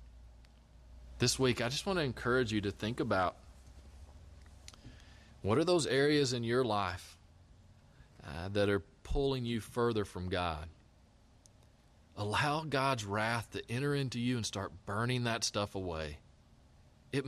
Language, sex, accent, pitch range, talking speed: English, male, American, 85-115 Hz, 140 wpm